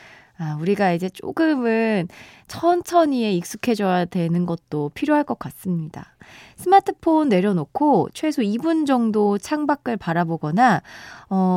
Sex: female